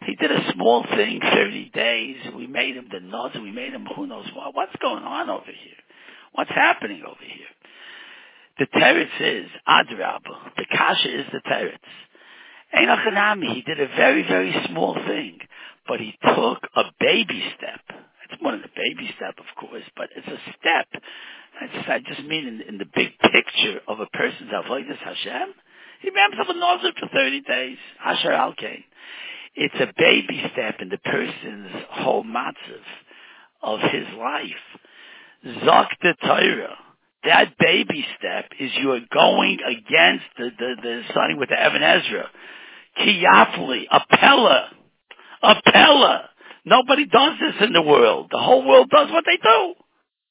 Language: English